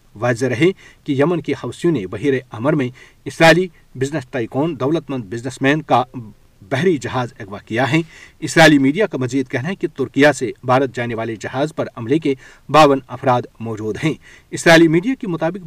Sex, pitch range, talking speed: male, 125-155 Hz, 180 wpm